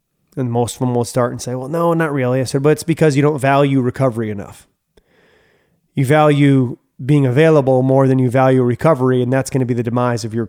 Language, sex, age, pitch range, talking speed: English, male, 30-49, 120-155 Hz, 230 wpm